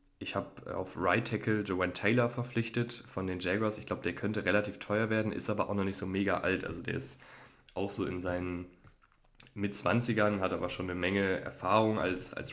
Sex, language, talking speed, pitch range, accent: male, German, 200 wpm, 90-105 Hz, German